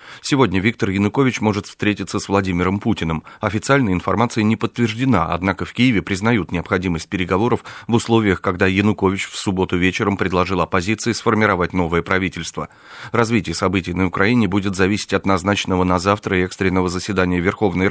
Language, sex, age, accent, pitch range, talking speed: Russian, male, 30-49, native, 90-110 Hz, 145 wpm